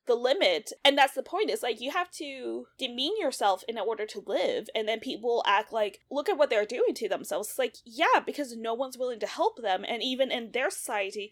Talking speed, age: 235 wpm, 20-39